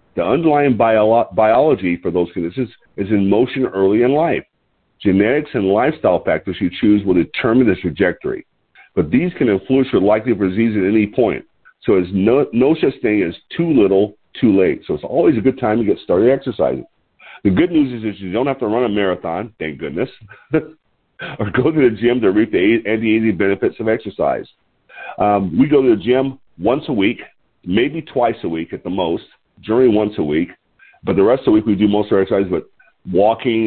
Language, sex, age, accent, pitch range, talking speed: English, male, 50-69, American, 100-125 Hz, 205 wpm